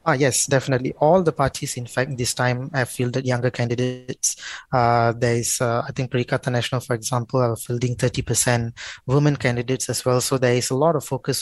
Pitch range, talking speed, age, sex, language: 120-135 Hz, 200 wpm, 20-39, male, English